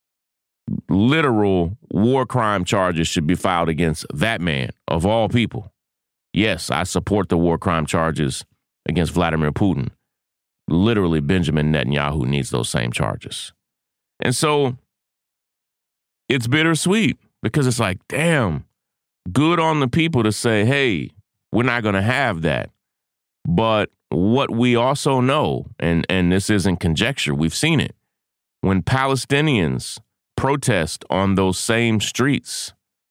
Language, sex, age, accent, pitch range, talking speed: English, male, 30-49, American, 90-125 Hz, 130 wpm